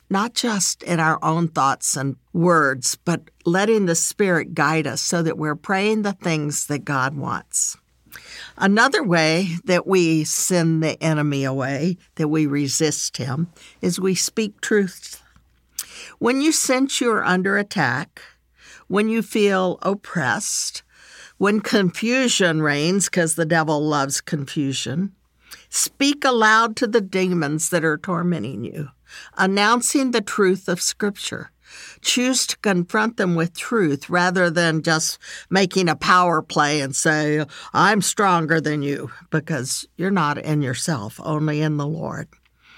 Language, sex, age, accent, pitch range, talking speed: English, female, 60-79, American, 155-200 Hz, 140 wpm